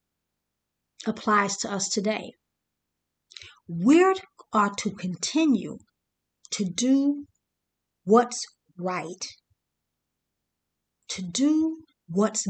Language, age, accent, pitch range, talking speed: English, 50-69, American, 190-255 Hz, 75 wpm